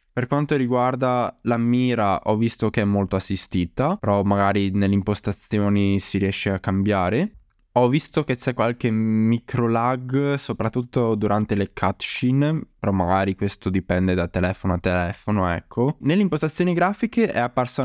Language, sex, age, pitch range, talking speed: Italian, male, 20-39, 100-125 Hz, 150 wpm